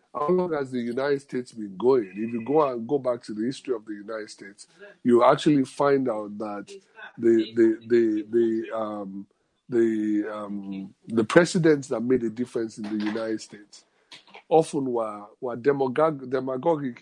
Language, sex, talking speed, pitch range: English, male, 170 wpm, 110-150 Hz